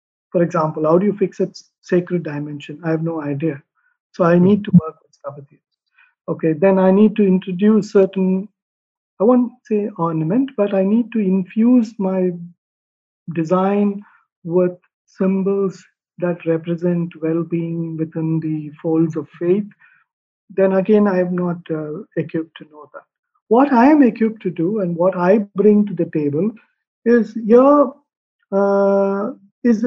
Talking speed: 150 wpm